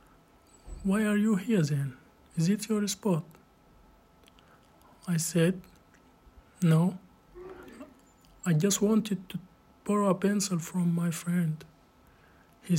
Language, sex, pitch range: English, male, 160-195 Hz